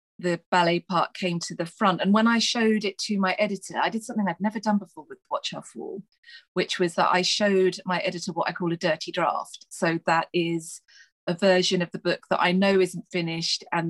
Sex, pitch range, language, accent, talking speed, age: female, 175-215 Hz, English, British, 235 wpm, 30-49